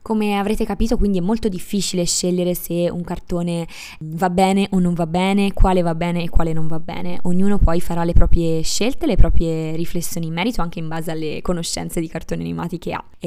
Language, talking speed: Italian, 210 wpm